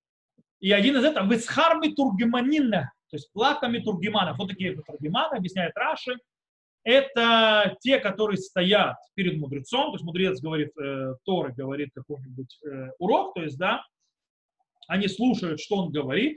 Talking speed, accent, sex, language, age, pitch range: 145 wpm, native, male, Russian, 30-49, 155-230 Hz